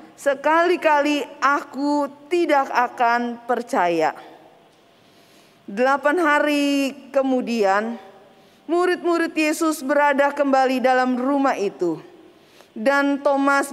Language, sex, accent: Indonesian, female, native